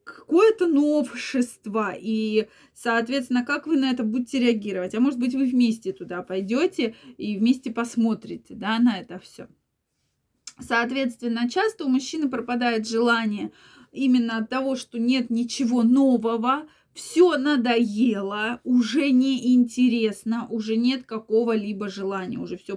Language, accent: Russian, native